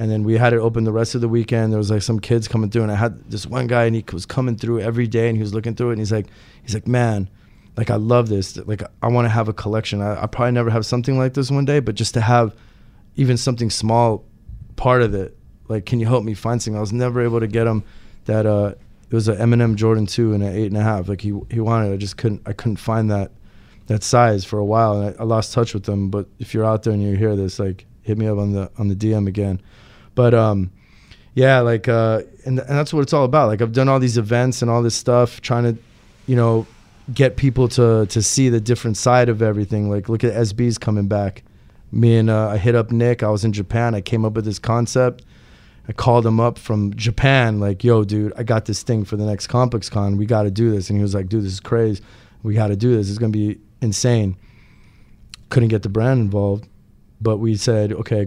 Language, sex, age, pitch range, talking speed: English, male, 20-39, 105-120 Hz, 260 wpm